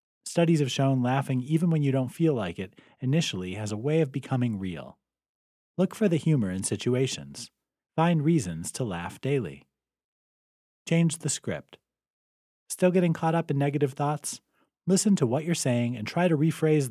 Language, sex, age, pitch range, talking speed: English, male, 30-49, 105-160 Hz, 170 wpm